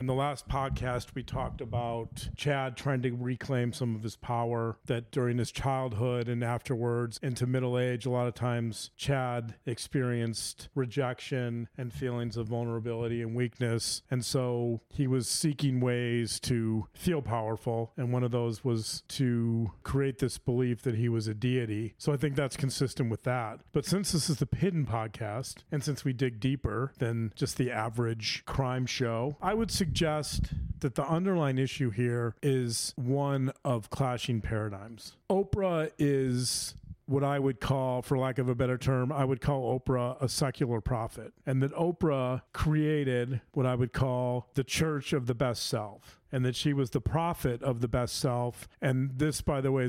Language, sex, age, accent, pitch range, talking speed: English, male, 40-59, American, 120-135 Hz, 175 wpm